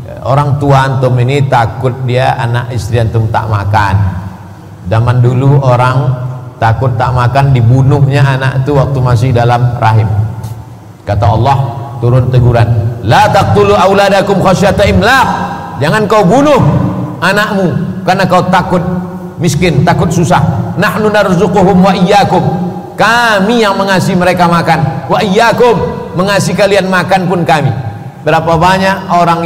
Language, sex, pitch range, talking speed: Indonesian, male, 120-175 Hz, 115 wpm